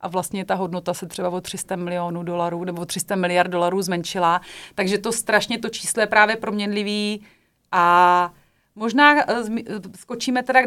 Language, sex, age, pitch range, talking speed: Czech, female, 30-49, 180-225 Hz, 165 wpm